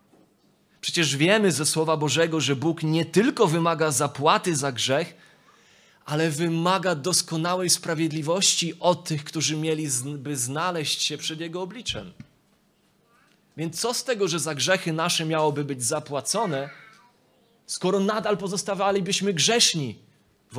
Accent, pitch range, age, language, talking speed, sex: native, 125-165 Hz, 30-49, Polish, 125 wpm, male